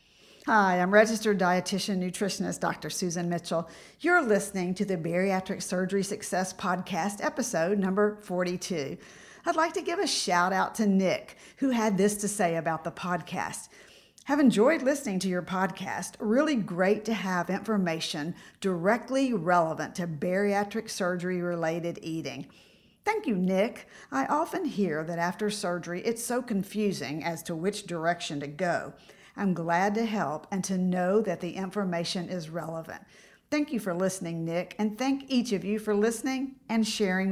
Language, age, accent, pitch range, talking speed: English, 50-69, American, 175-215 Hz, 160 wpm